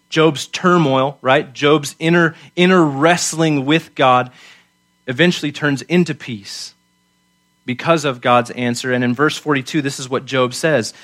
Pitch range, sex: 125-165 Hz, male